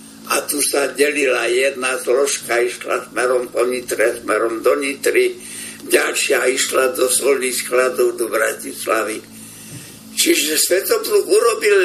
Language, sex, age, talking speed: Slovak, male, 60-79, 115 wpm